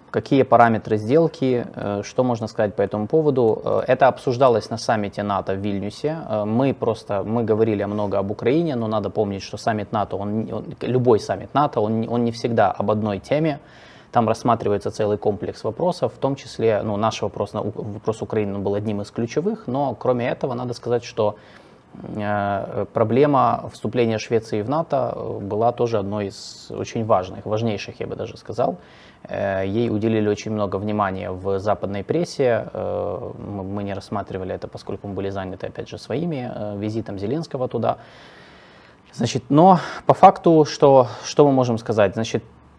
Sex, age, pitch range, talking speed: male, 20-39, 100-130 Hz, 155 wpm